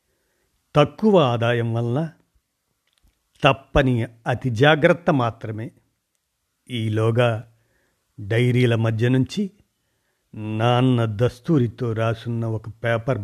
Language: Telugu